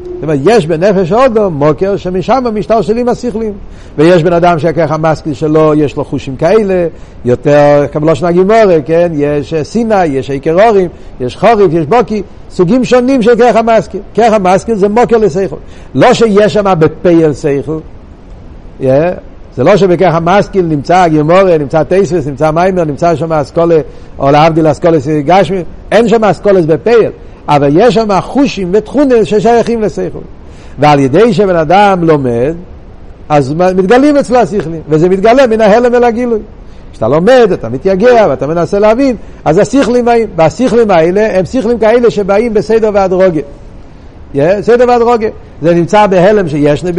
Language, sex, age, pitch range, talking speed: Hebrew, male, 60-79, 155-225 Hz, 135 wpm